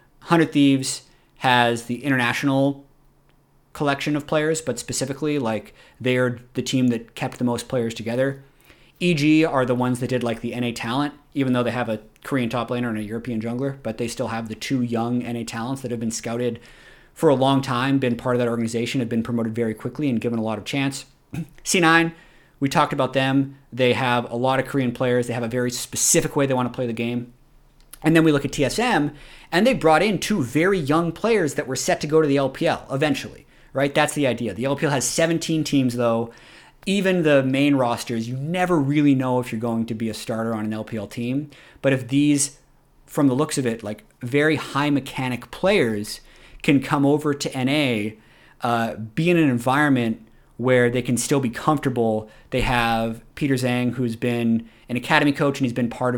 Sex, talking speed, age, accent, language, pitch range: male, 205 wpm, 30-49, American, English, 120-145 Hz